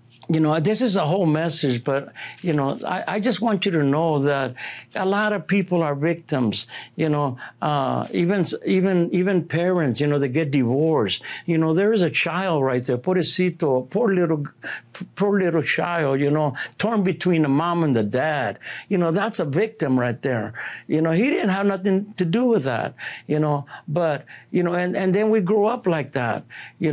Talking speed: 200 wpm